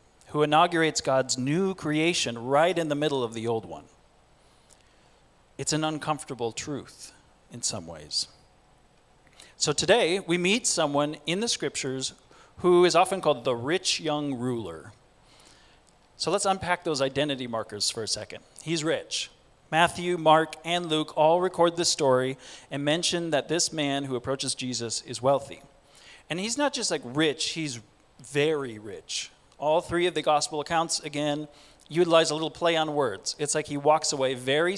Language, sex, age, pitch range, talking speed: English, male, 40-59, 130-160 Hz, 160 wpm